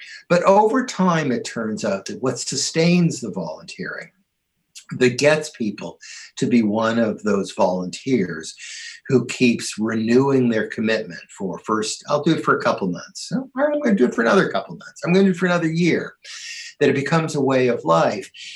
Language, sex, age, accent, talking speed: English, male, 50-69, American, 180 wpm